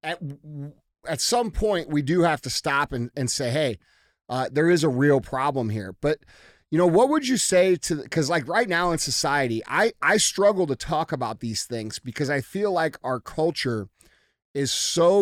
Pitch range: 125-165 Hz